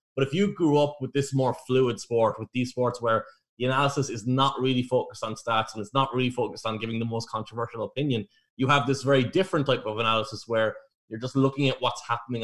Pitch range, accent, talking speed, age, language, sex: 110-135 Hz, Irish, 230 wpm, 20-39, English, male